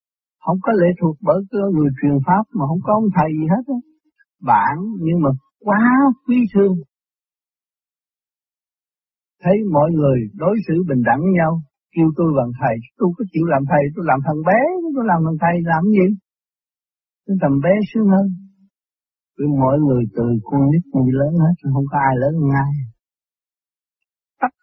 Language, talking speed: Vietnamese, 170 wpm